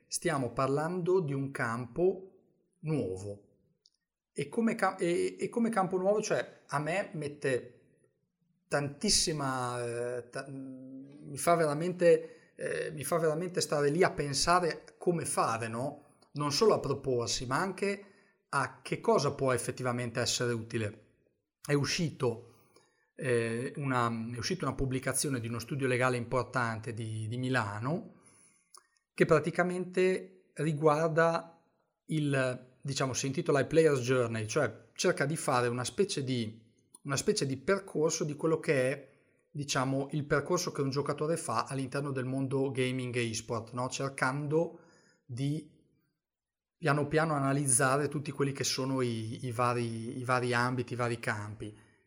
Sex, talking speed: male, 135 wpm